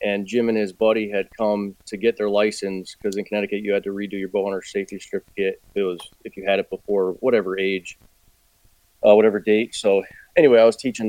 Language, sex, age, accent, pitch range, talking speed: English, male, 30-49, American, 100-110 Hz, 220 wpm